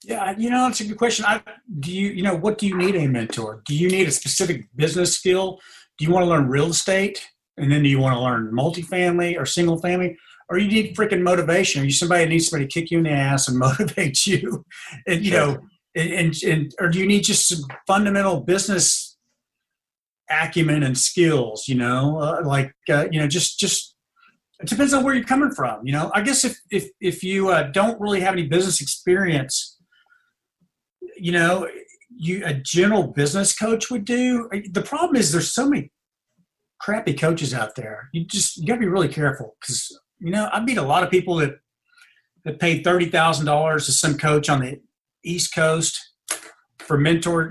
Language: English